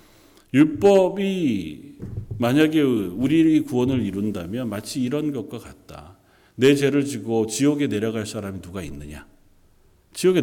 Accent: native